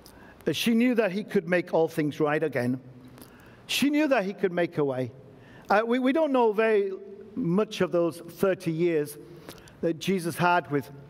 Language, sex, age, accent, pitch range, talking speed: English, male, 50-69, British, 140-180 Hz, 180 wpm